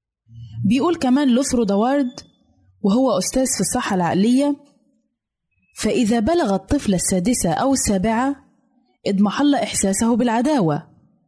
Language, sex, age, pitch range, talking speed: Arabic, female, 20-39, 205-260 Hz, 95 wpm